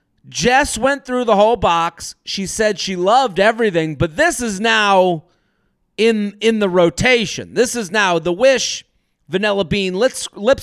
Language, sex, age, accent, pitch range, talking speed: English, male, 30-49, American, 155-210 Hz, 160 wpm